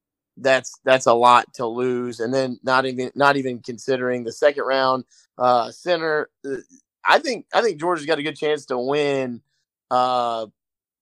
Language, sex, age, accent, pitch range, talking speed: English, male, 20-39, American, 120-140 Hz, 165 wpm